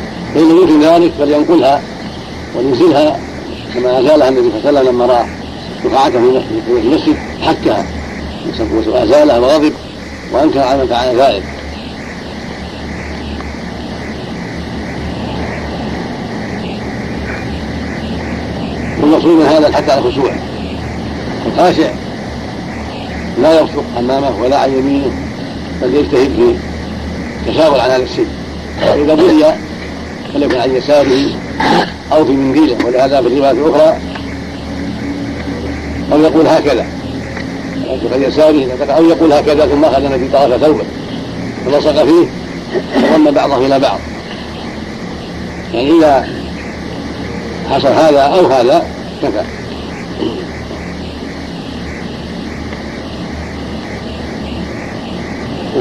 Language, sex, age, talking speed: Arabic, male, 70-89, 90 wpm